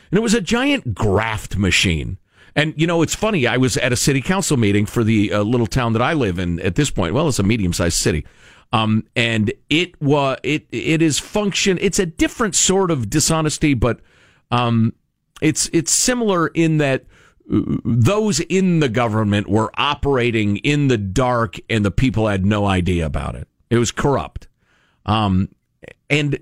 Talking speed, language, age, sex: 180 wpm, English, 40-59, male